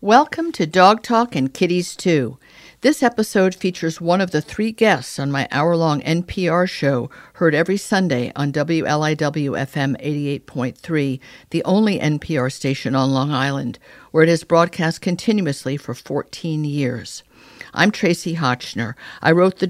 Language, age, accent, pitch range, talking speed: English, 50-69, American, 140-175 Hz, 145 wpm